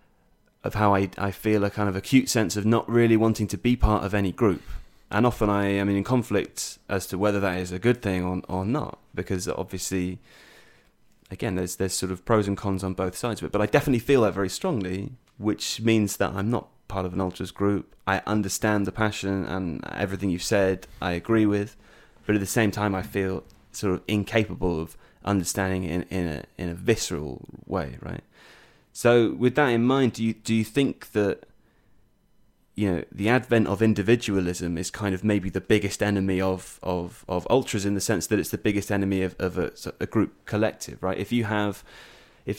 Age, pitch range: 30-49, 95-110 Hz